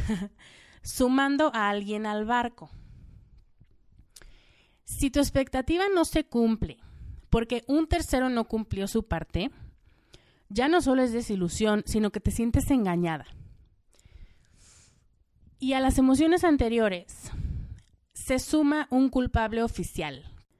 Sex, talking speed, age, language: female, 110 wpm, 30-49, Spanish